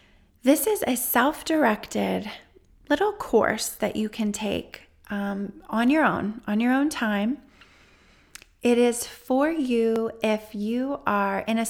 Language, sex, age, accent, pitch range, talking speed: English, female, 30-49, American, 200-235 Hz, 140 wpm